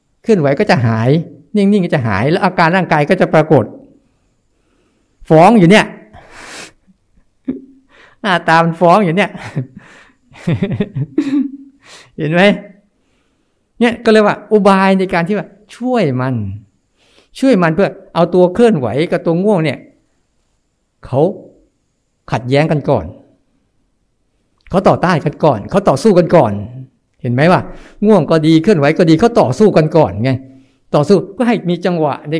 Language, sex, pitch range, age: Thai, male, 135-205 Hz, 60-79